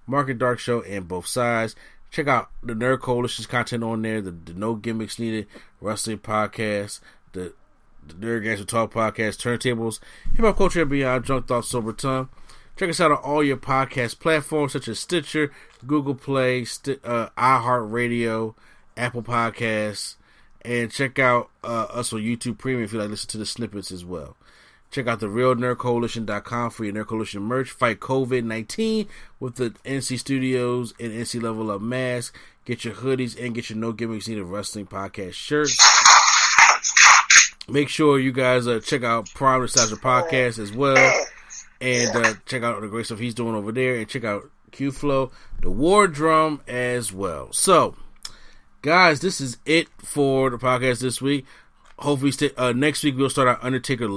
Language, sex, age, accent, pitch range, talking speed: English, male, 30-49, American, 110-135 Hz, 170 wpm